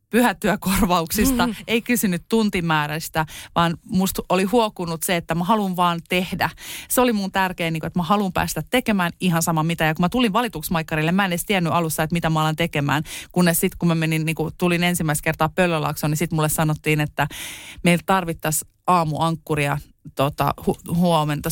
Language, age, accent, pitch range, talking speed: Finnish, 30-49, native, 160-185 Hz, 175 wpm